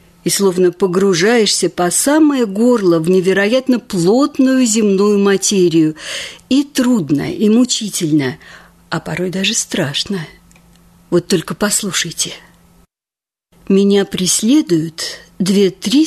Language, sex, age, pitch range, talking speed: Russian, female, 50-69, 175-240 Hz, 95 wpm